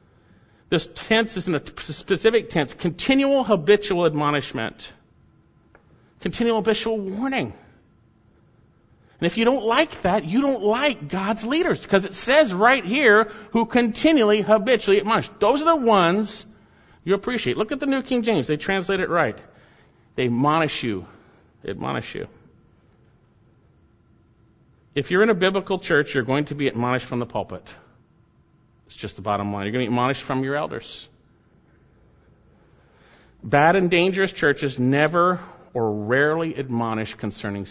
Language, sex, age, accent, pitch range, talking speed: English, male, 50-69, American, 125-200 Hz, 145 wpm